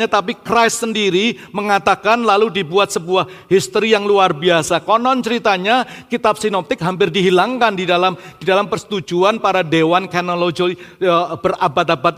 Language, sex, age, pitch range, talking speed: Indonesian, male, 40-59, 175-220 Hz, 135 wpm